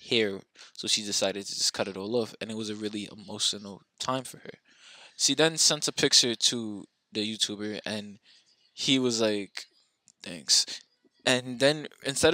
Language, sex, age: English, male, 20-39